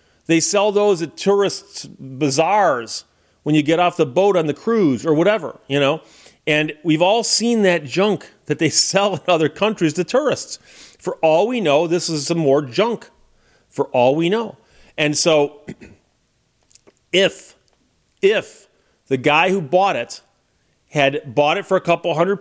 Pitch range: 140-190 Hz